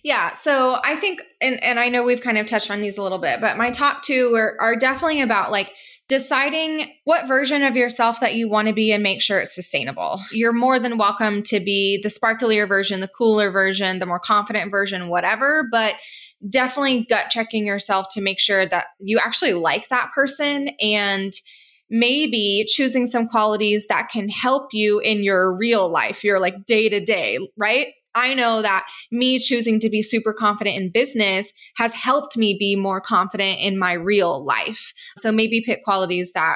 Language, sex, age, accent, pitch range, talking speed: English, female, 20-39, American, 200-245 Hz, 190 wpm